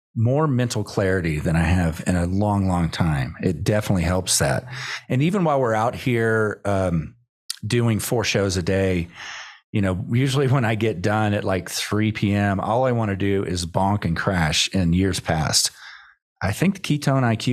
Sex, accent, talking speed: male, American, 190 wpm